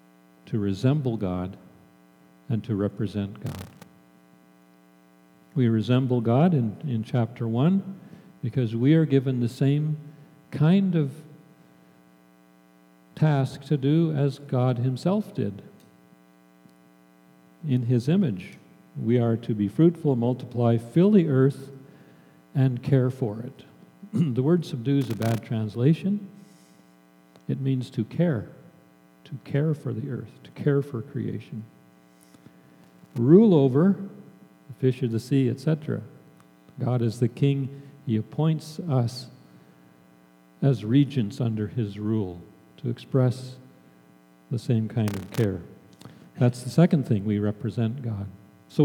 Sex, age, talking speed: male, 50-69, 125 wpm